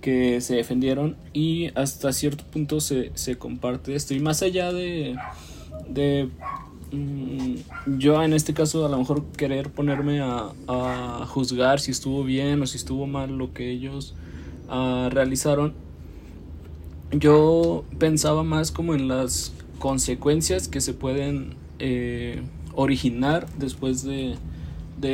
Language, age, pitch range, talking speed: Spanish, 20-39, 115-145 Hz, 135 wpm